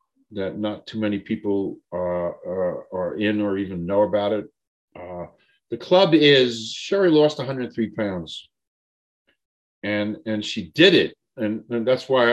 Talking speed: 150 wpm